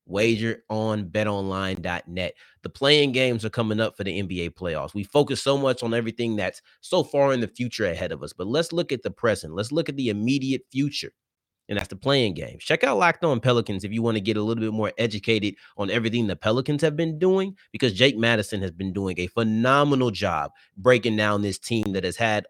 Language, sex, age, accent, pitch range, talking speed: English, male, 30-49, American, 100-135 Hz, 220 wpm